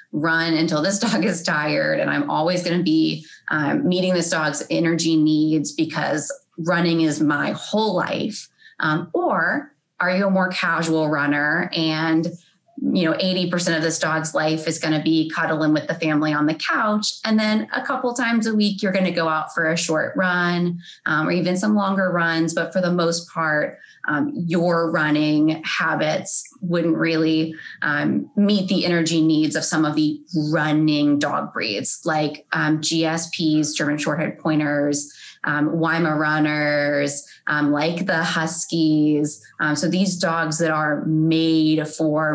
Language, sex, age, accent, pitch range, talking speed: English, female, 20-39, American, 155-180 Hz, 165 wpm